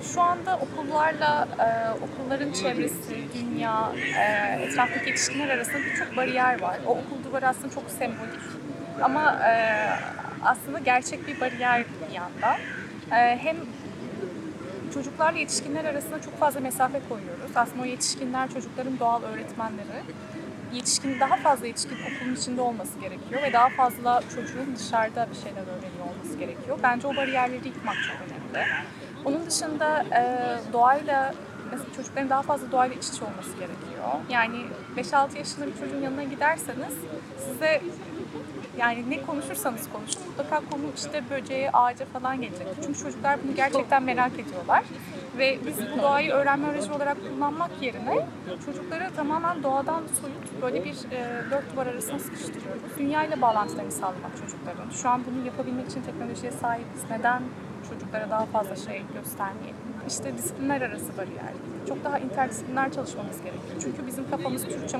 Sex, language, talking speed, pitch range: female, Turkish, 140 wpm, 245-285 Hz